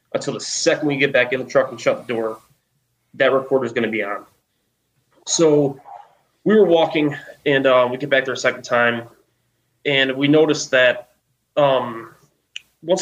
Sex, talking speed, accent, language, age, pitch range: male, 180 wpm, American, English, 20-39, 120-145 Hz